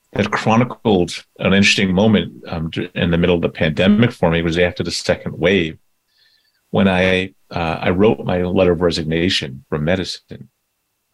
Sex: male